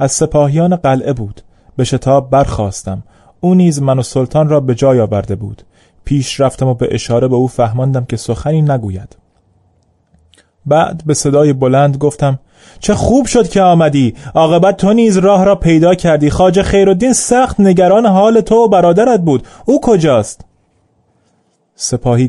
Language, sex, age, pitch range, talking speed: Persian, male, 30-49, 115-150 Hz, 155 wpm